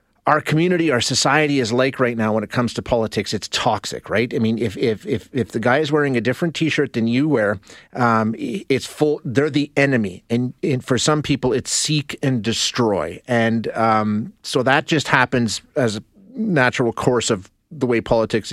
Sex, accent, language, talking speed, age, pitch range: male, American, English, 200 wpm, 30-49, 115-155 Hz